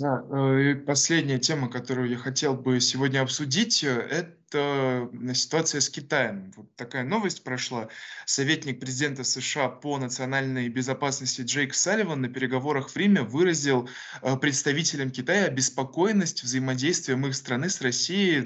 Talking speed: 125 wpm